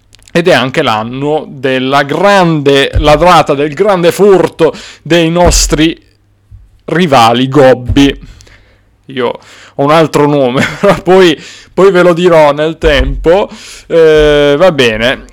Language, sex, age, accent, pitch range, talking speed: Italian, male, 20-39, native, 115-160 Hz, 115 wpm